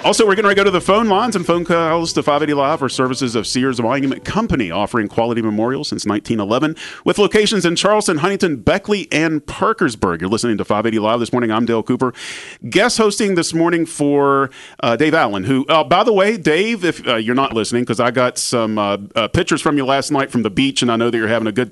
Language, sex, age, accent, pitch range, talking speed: English, male, 40-59, American, 110-155 Hz, 235 wpm